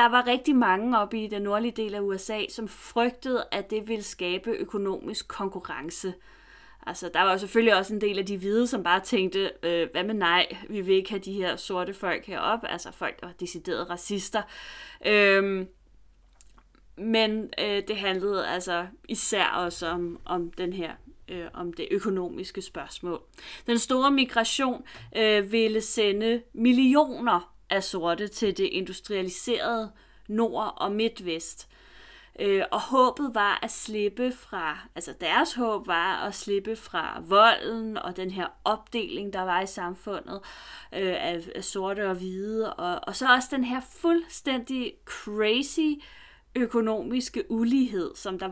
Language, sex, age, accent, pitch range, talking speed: Danish, female, 30-49, native, 185-240 Hz, 150 wpm